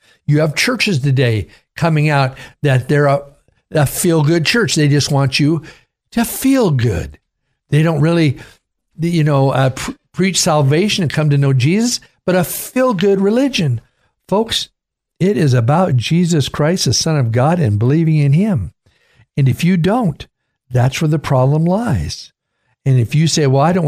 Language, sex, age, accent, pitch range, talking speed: English, male, 60-79, American, 125-160 Hz, 165 wpm